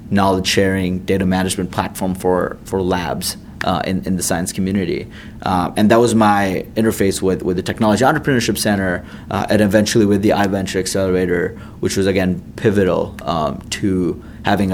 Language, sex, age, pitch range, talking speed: English, male, 30-49, 95-110 Hz, 165 wpm